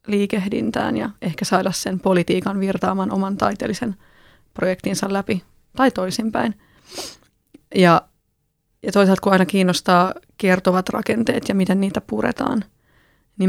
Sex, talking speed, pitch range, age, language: female, 115 wpm, 180-205 Hz, 30-49, Finnish